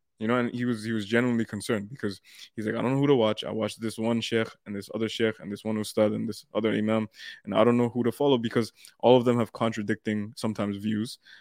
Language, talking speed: English, 265 wpm